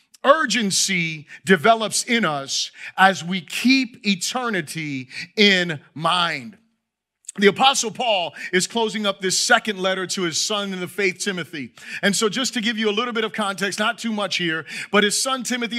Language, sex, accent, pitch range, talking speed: English, male, American, 185-235 Hz, 170 wpm